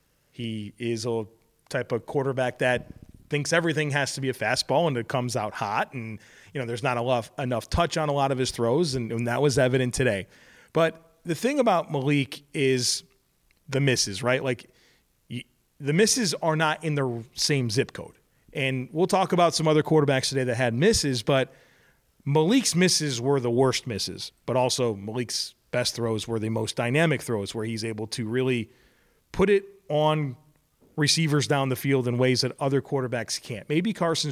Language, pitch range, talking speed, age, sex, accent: English, 120-155 Hz, 185 wpm, 30-49, male, American